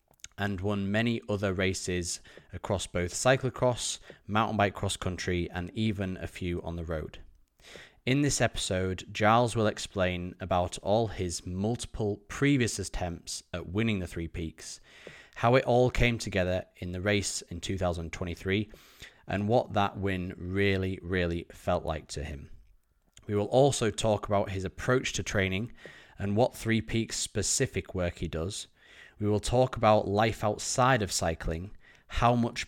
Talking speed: 150 wpm